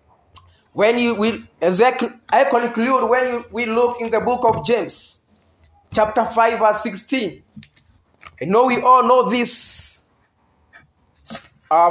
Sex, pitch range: male, 225-290 Hz